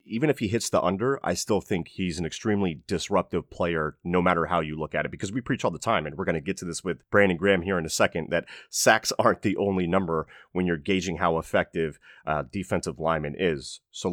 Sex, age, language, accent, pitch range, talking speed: male, 30-49, English, American, 85-100 Hz, 240 wpm